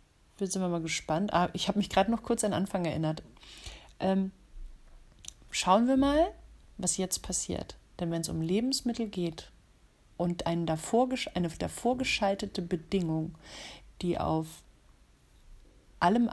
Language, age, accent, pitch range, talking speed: German, 40-59, German, 165-205 Hz, 135 wpm